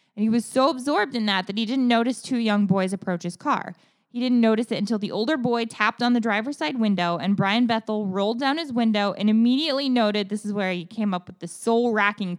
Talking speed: 245 wpm